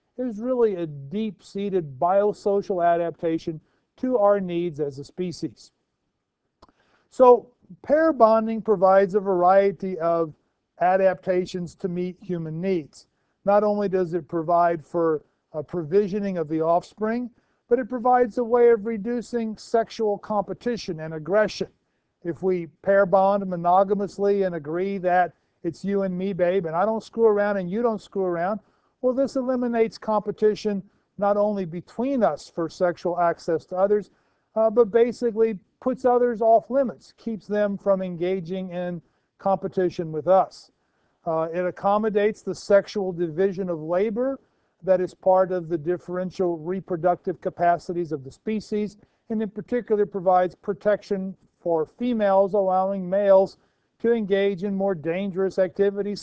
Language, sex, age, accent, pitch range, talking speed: English, male, 50-69, American, 175-215 Hz, 140 wpm